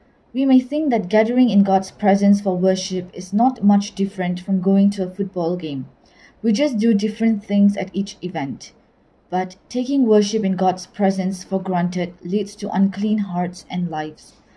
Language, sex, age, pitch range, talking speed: Tamil, female, 20-39, 185-220 Hz, 175 wpm